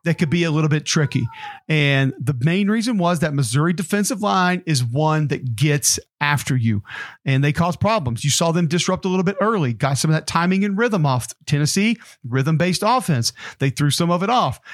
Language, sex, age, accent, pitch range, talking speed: English, male, 40-59, American, 140-190 Hz, 210 wpm